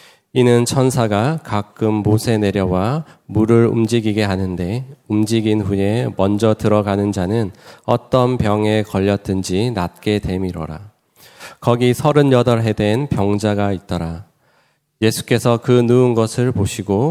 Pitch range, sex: 95-115 Hz, male